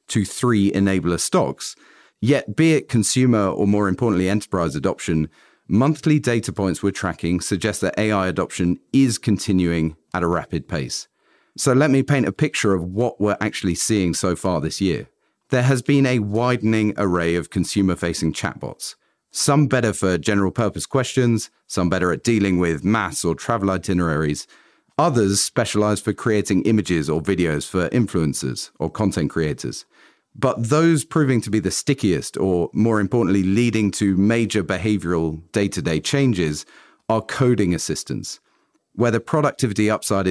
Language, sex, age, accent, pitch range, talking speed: English, male, 40-59, British, 90-115 Hz, 155 wpm